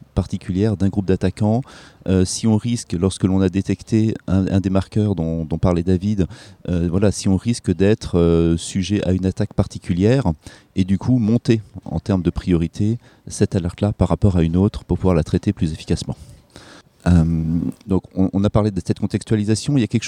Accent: French